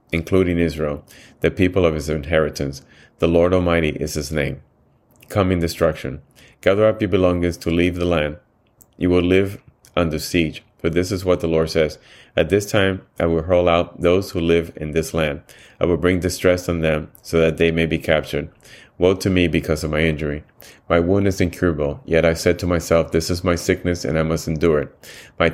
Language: English